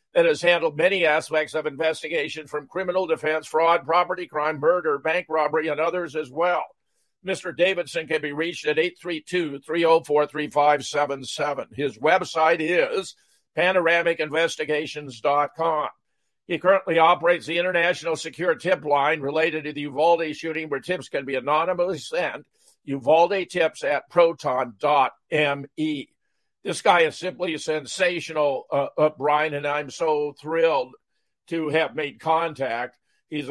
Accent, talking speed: American, 130 wpm